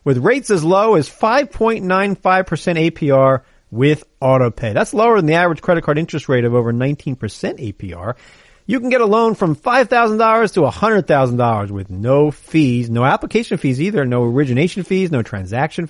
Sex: male